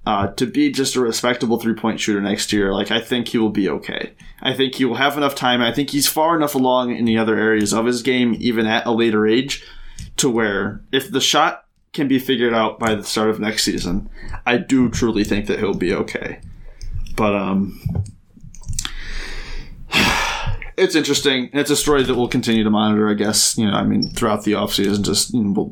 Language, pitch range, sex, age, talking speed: English, 110-145 Hz, male, 20-39, 210 wpm